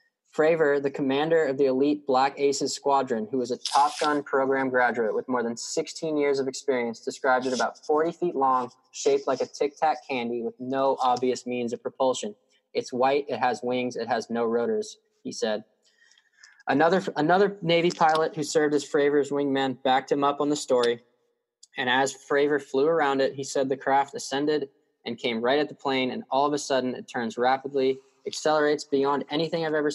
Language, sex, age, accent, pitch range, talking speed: English, male, 20-39, American, 130-155 Hz, 190 wpm